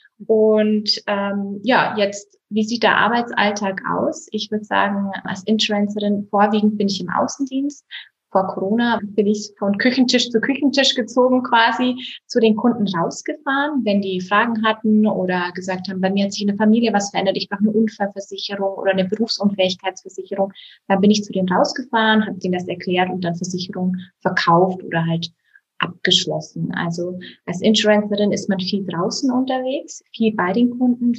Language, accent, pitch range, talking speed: German, German, 185-225 Hz, 165 wpm